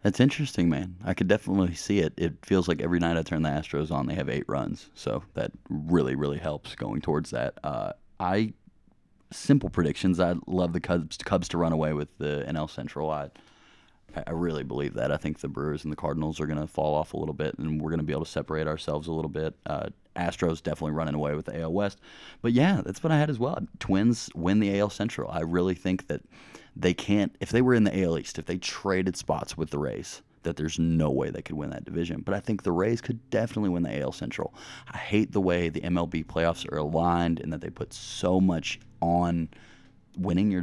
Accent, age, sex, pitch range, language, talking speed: American, 30-49, male, 75-95 Hz, English, 235 wpm